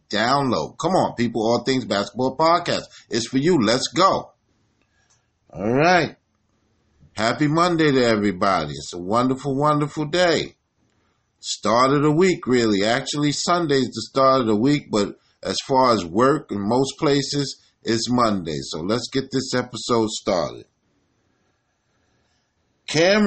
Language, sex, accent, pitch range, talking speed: English, male, American, 110-145 Hz, 140 wpm